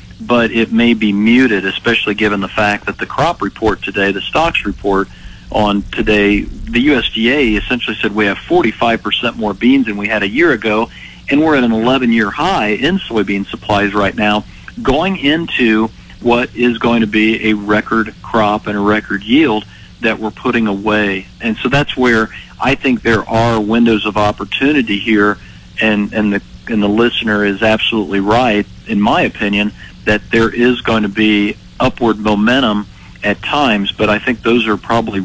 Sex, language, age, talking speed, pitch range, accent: male, English, 50-69, 175 wpm, 105-115 Hz, American